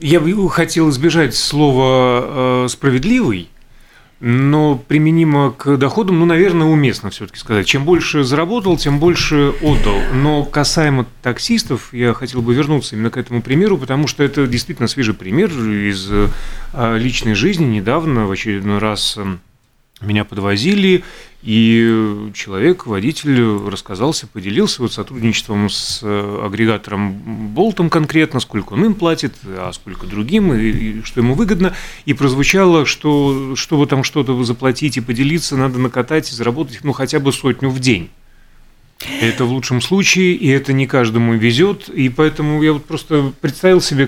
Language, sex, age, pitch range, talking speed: Russian, male, 30-49, 115-150 Hz, 145 wpm